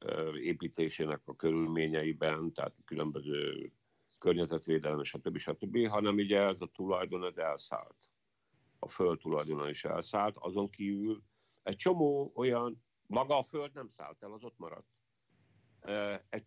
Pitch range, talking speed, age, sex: 90-120 Hz, 125 wpm, 50-69, male